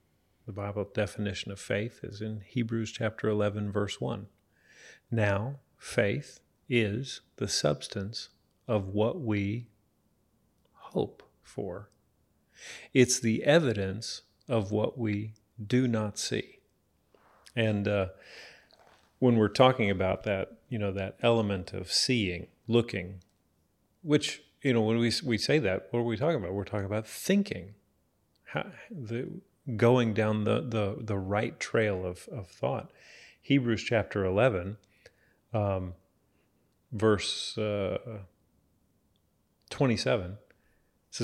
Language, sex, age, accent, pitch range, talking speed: English, male, 40-59, American, 100-125 Hz, 115 wpm